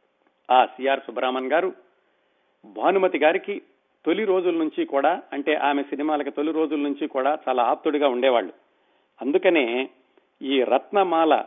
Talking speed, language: 120 wpm, Telugu